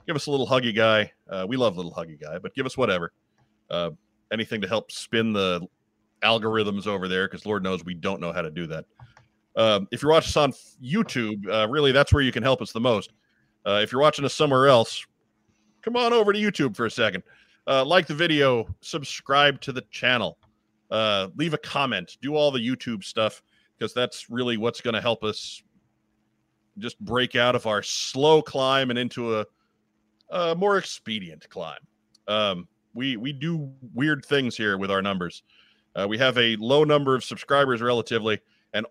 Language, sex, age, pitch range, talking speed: English, male, 40-59, 105-135 Hz, 195 wpm